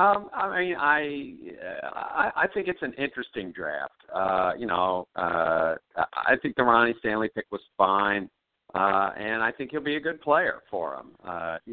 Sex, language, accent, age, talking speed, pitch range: male, English, American, 50-69, 175 wpm, 95-120 Hz